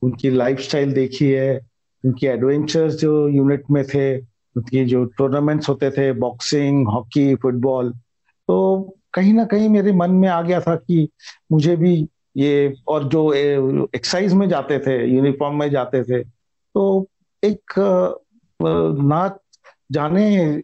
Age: 50-69